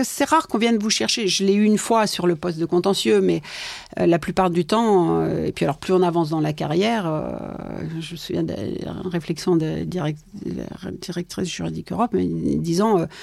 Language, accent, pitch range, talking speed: French, French, 170-210 Hz, 195 wpm